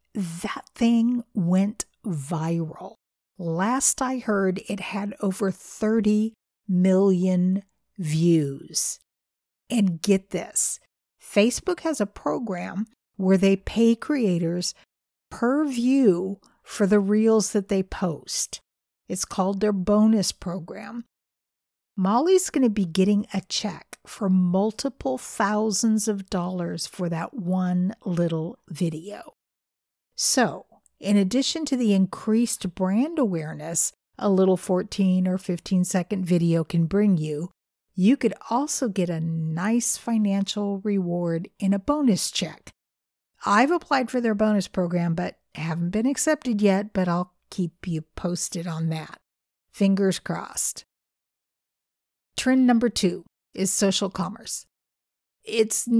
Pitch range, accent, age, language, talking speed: 175-220 Hz, American, 50-69, English, 120 wpm